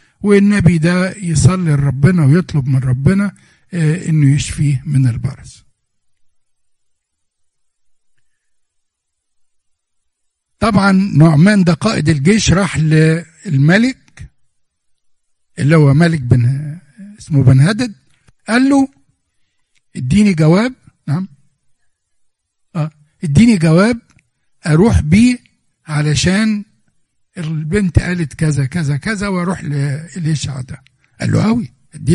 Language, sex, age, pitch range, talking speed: Arabic, male, 60-79, 140-190 Hz, 85 wpm